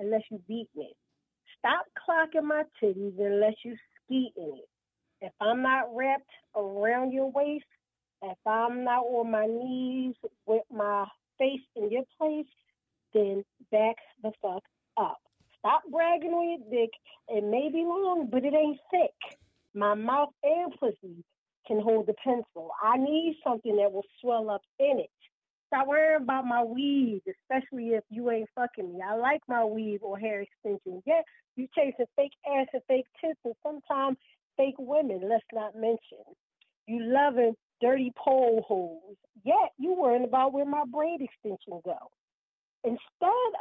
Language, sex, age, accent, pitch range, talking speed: English, female, 40-59, American, 220-295 Hz, 160 wpm